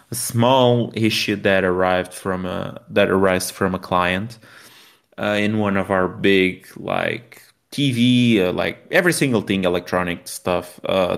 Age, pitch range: 20-39, 95-110 Hz